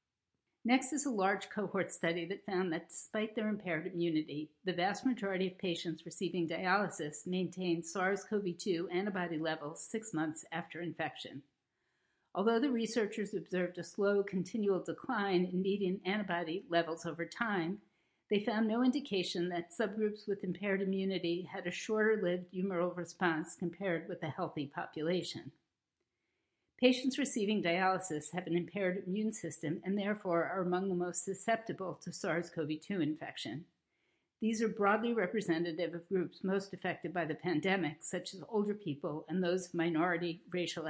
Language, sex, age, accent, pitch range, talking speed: English, female, 50-69, American, 170-205 Hz, 145 wpm